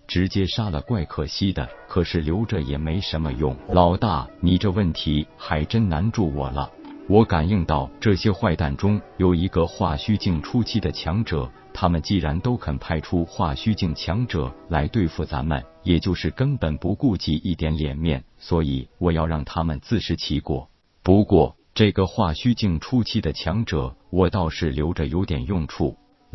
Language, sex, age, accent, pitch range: Chinese, male, 50-69, native, 75-100 Hz